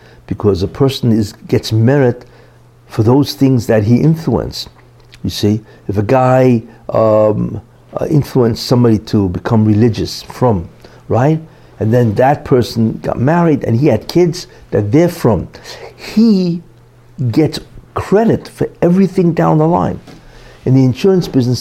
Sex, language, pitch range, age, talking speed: male, English, 110-140 Hz, 60-79, 140 wpm